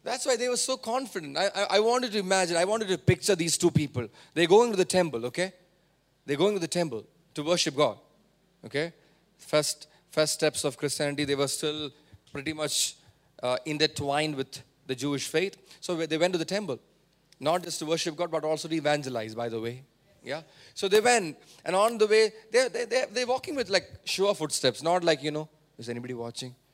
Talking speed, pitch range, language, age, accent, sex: 205 wpm, 150-190 Hz, English, 30-49, Indian, male